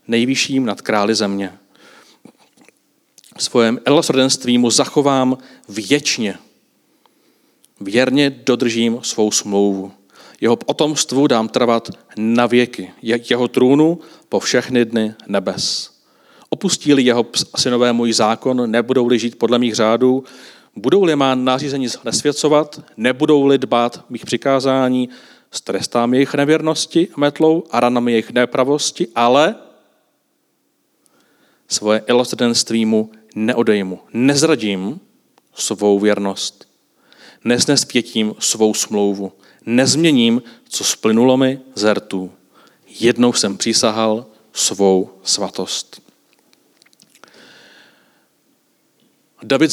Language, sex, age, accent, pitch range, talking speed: Czech, male, 40-59, native, 110-145 Hz, 90 wpm